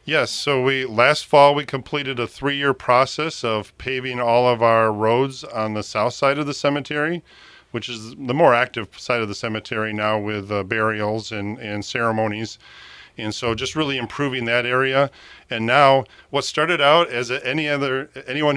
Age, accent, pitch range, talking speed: 40-59, American, 105-130 Hz, 180 wpm